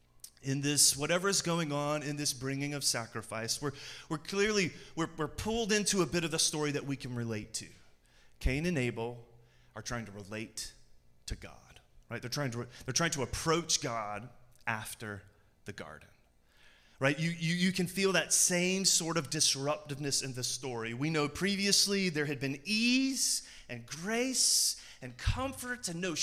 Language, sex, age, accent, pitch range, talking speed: English, male, 30-49, American, 120-175 Hz, 175 wpm